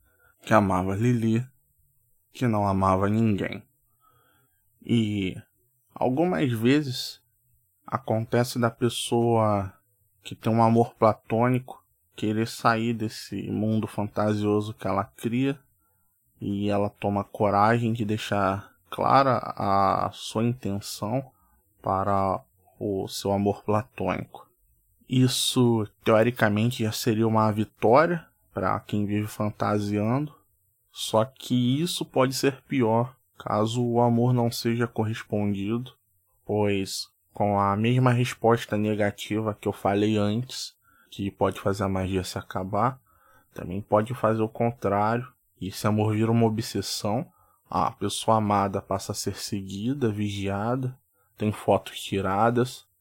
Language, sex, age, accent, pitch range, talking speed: Portuguese, male, 20-39, Brazilian, 100-120 Hz, 115 wpm